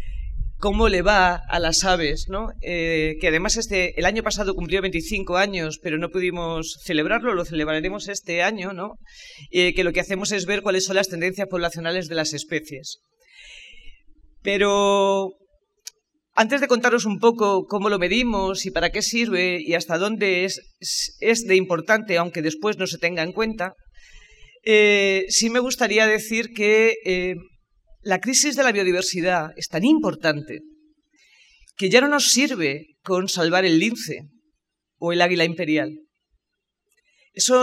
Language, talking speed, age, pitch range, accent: Spanish, 150 wpm, 30-49, 175-225 Hz, Spanish